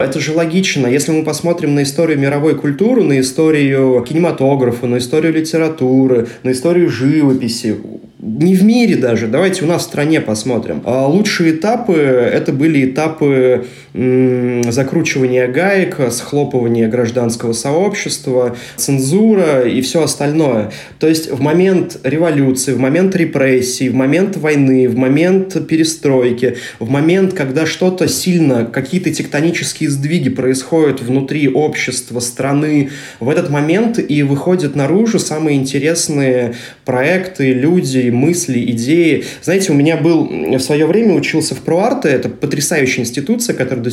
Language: Russian